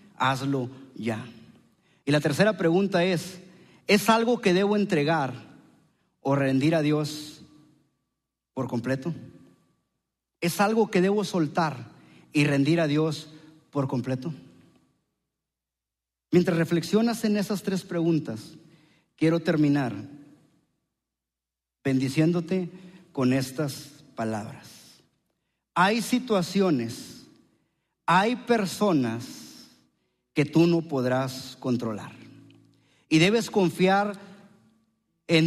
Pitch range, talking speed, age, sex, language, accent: 135-200 Hz, 90 wpm, 40-59, male, English, Mexican